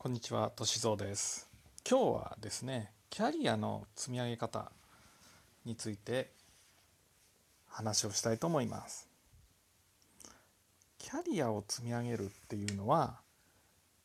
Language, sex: Japanese, male